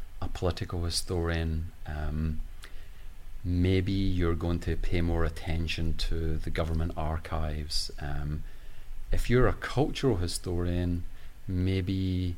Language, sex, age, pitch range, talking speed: English, male, 30-49, 85-105 Hz, 105 wpm